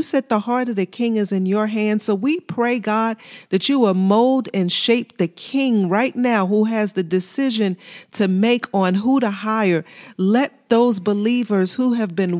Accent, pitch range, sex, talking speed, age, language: American, 190-235 Hz, female, 195 wpm, 40-59, English